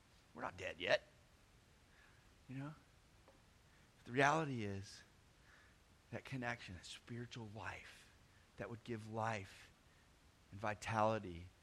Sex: male